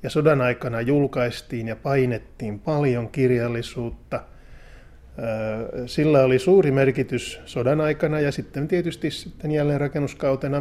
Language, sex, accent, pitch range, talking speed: Finnish, male, native, 125-145 Hz, 115 wpm